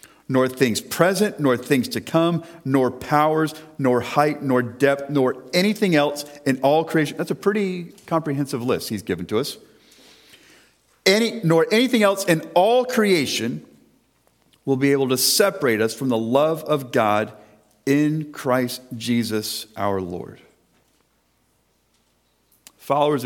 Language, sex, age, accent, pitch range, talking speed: English, male, 40-59, American, 130-180 Hz, 135 wpm